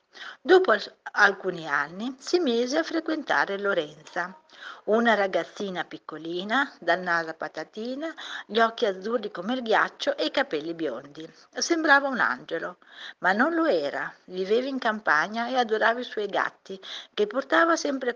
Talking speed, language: 140 wpm, Italian